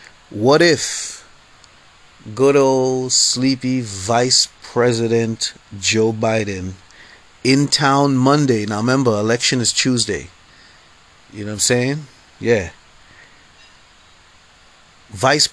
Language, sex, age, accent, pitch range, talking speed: English, male, 30-49, American, 100-135 Hz, 95 wpm